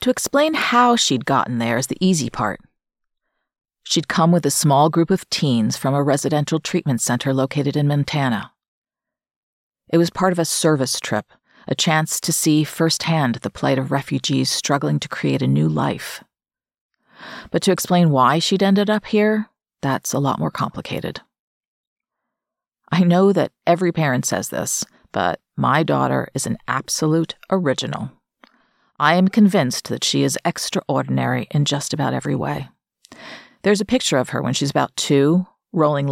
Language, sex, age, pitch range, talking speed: English, female, 40-59, 135-180 Hz, 160 wpm